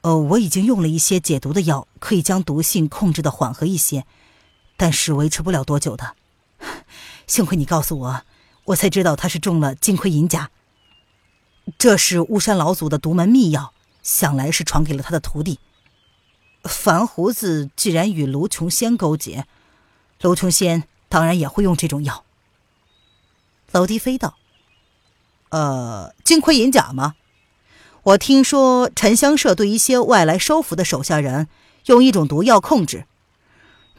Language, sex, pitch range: Chinese, female, 135-200 Hz